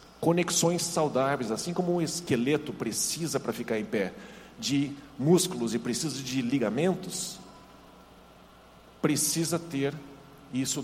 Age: 50-69